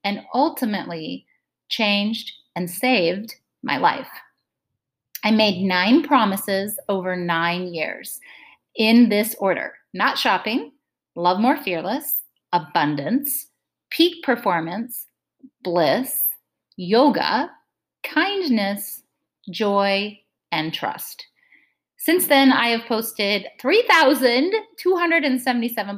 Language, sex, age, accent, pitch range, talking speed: English, female, 30-49, American, 195-265 Hz, 85 wpm